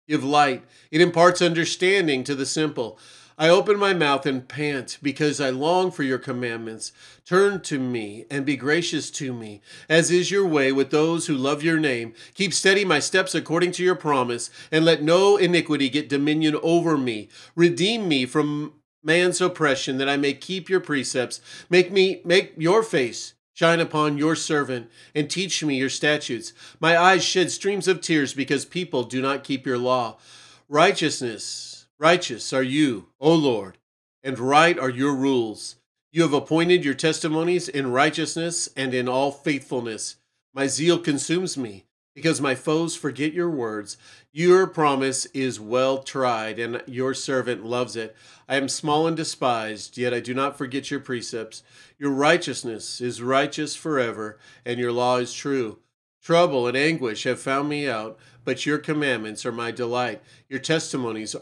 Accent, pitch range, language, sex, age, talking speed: American, 125-160 Hz, English, male, 40-59, 165 wpm